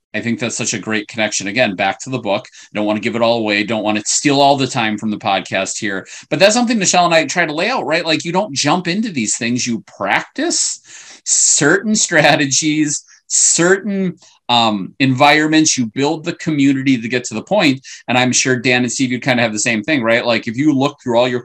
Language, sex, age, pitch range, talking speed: English, male, 30-49, 110-155 Hz, 240 wpm